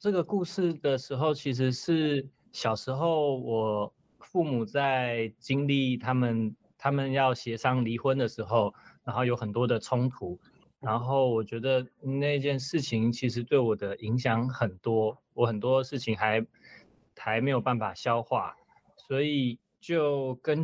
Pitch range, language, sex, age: 120-145 Hz, Japanese, male, 20-39